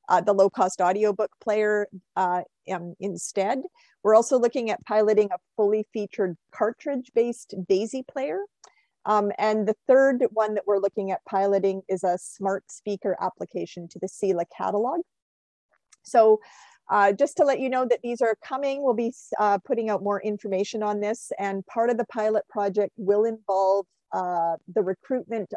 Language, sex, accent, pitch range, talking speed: English, female, American, 195-235 Hz, 160 wpm